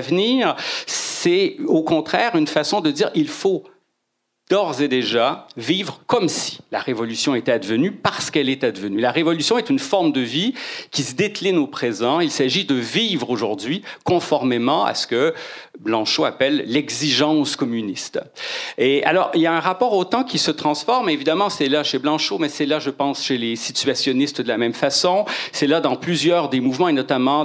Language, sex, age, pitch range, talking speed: French, male, 50-69, 130-190 Hz, 190 wpm